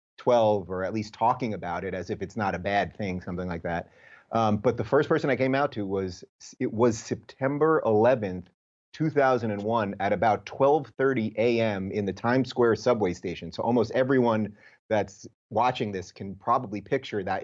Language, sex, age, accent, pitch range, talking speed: English, male, 30-49, American, 100-120 Hz, 180 wpm